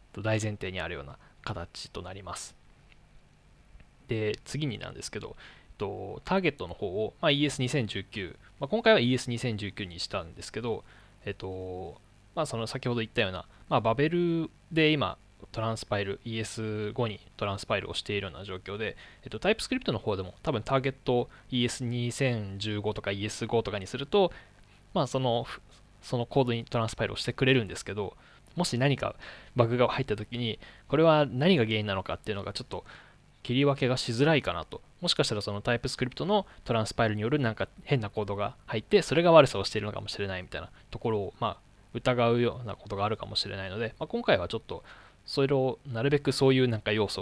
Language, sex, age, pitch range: Japanese, male, 20-39, 105-135 Hz